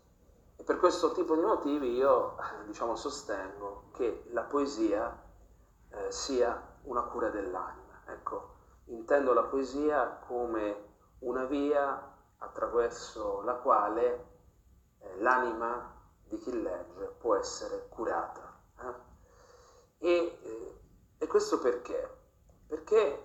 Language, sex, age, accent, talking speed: Italian, male, 40-59, native, 110 wpm